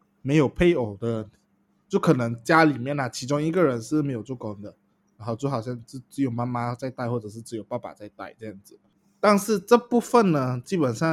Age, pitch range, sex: 20-39, 120-170 Hz, male